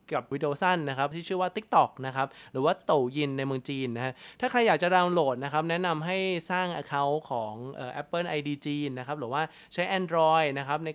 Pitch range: 135-175 Hz